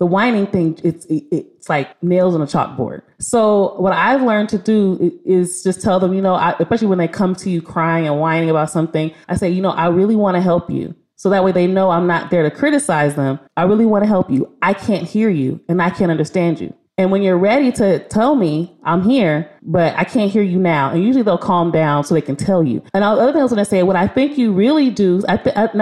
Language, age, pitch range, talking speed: English, 30-49, 165-205 Hz, 260 wpm